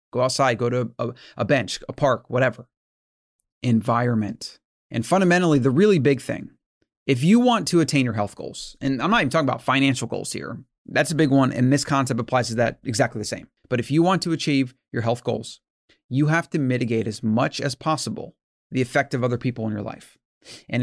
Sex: male